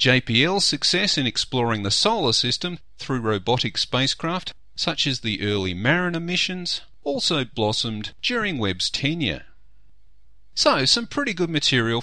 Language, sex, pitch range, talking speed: English, male, 100-155 Hz, 130 wpm